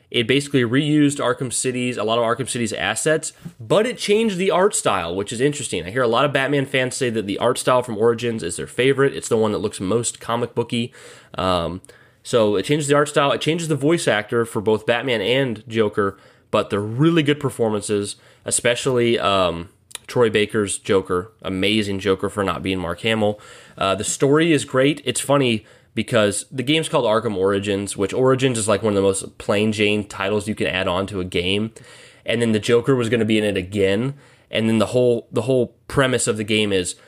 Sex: male